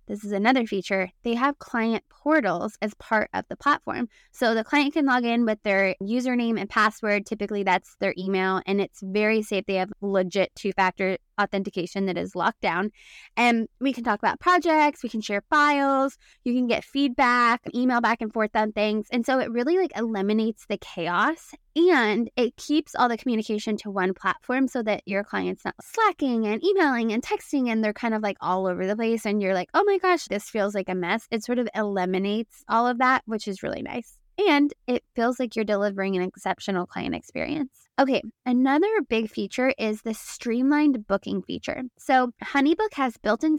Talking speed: 195 wpm